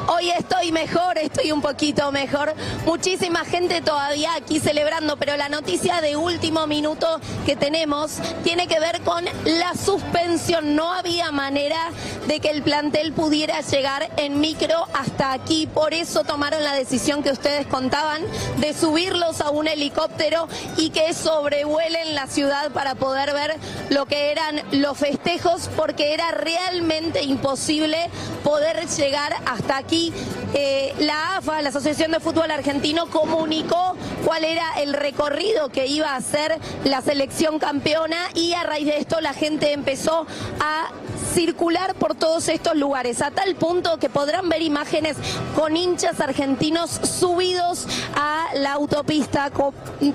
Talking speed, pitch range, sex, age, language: 145 wpm, 290-330 Hz, female, 20-39, Spanish